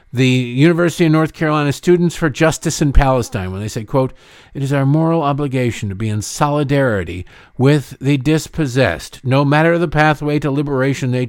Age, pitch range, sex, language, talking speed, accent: 50-69, 115-150 Hz, male, English, 175 wpm, American